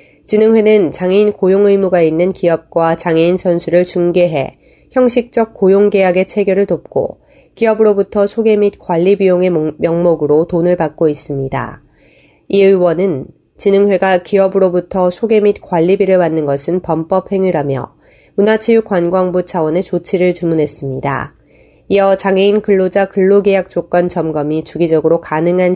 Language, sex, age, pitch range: Korean, female, 30-49, 165-205 Hz